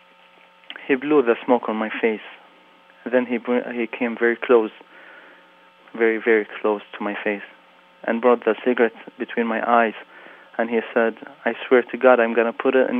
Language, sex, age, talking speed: English, male, 30-49, 185 wpm